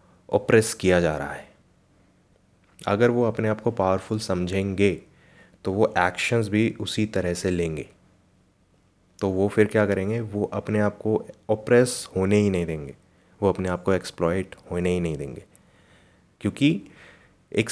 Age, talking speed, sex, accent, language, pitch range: 30-49, 150 wpm, male, native, Hindi, 90-105 Hz